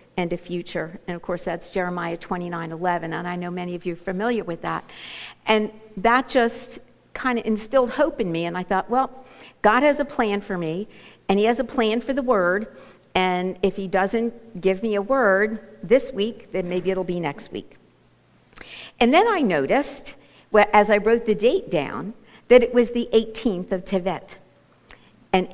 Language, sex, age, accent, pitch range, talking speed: English, female, 50-69, American, 180-235 Hz, 190 wpm